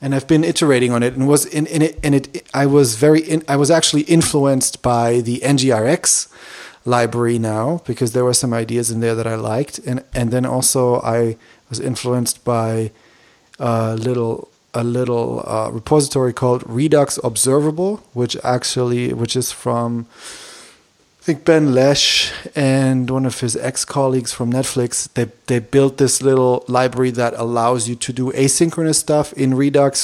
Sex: male